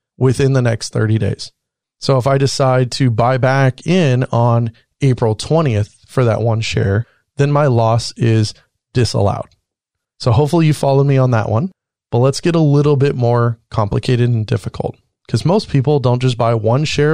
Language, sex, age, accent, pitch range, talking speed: English, male, 30-49, American, 115-145 Hz, 180 wpm